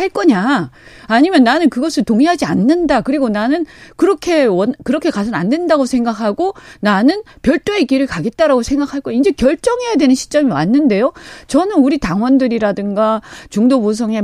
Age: 40-59